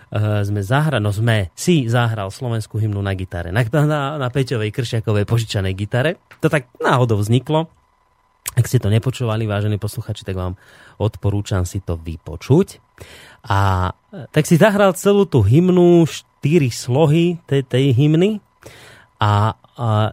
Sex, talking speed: male, 140 wpm